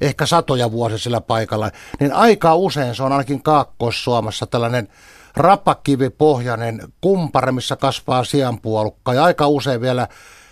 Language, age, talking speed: Finnish, 60-79, 125 wpm